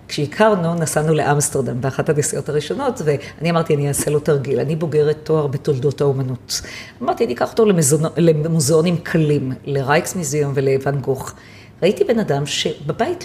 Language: Hebrew